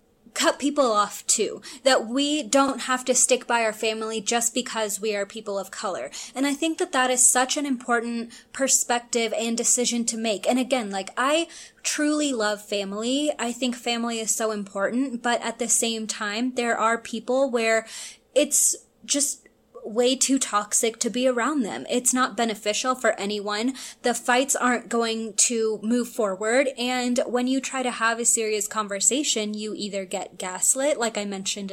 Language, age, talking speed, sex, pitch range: English, 20-39, 175 wpm, female, 220-260 Hz